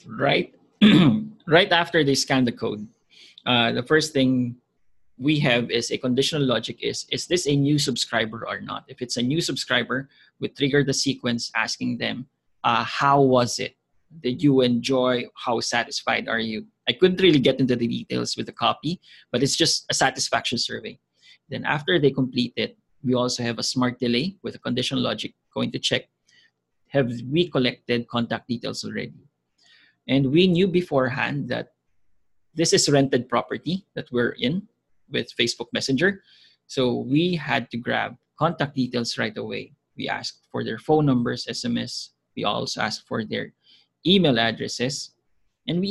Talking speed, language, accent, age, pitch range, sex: 165 wpm, English, Filipino, 20-39, 120-150 Hz, male